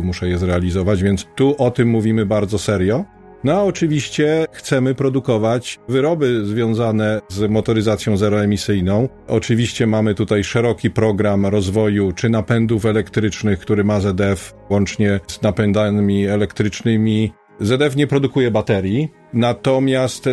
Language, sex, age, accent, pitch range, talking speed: Polish, male, 40-59, native, 105-120 Hz, 120 wpm